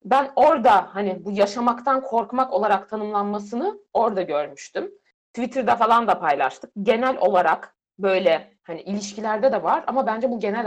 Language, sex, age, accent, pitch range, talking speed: Turkish, female, 60-79, native, 200-260 Hz, 140 wpm